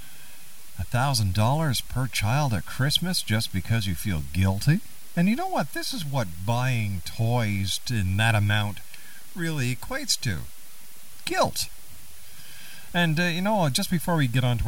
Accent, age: American, 50-69